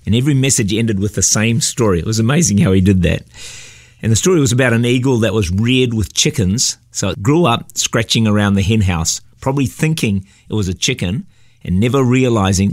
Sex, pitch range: male, 100-125 Hz